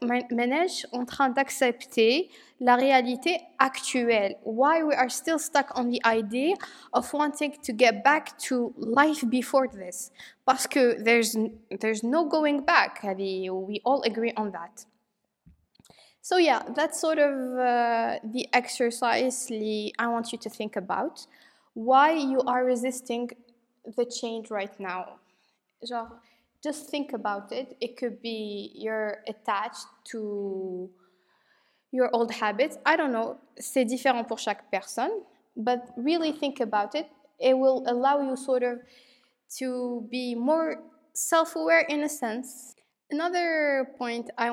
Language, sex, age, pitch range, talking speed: English, female, 20-39, 225-280 Hz, 135 wpm